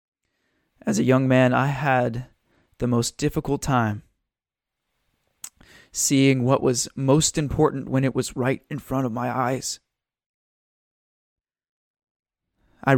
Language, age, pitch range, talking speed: English, 20-39, 125-155 Hz, 115 wpm